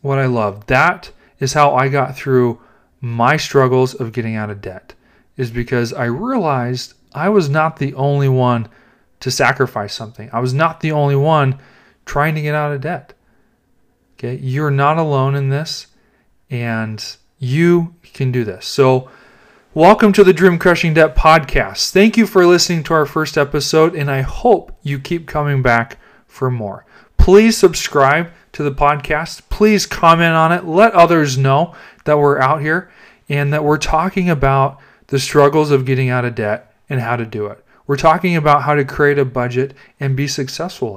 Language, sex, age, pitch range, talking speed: English, male, 30-49, 125-155 Hz, 175 wpm